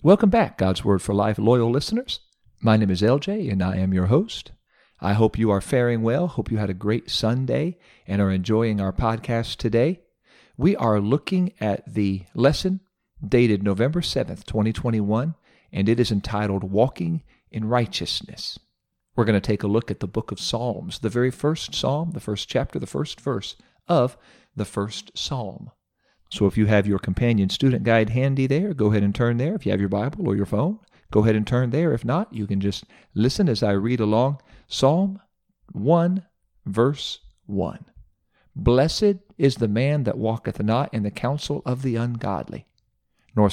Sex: male